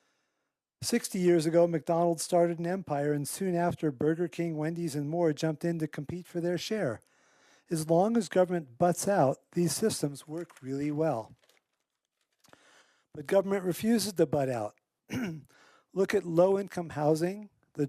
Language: English